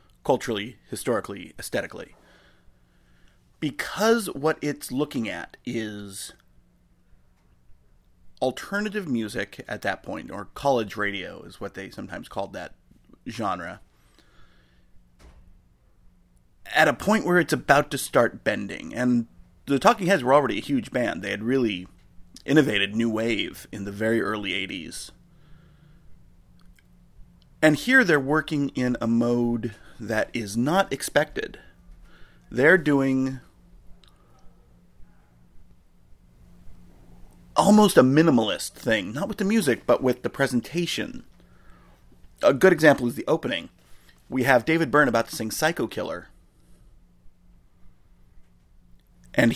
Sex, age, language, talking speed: male, 30-49, English, 115 wpm